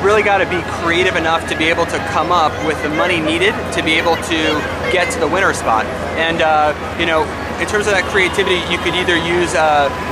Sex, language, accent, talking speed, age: male, English, American, 230 wpm, 30-49